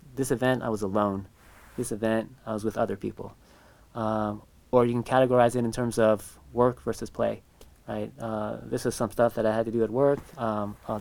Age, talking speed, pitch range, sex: 20-39, 215 wpm, 110-135 Hz, male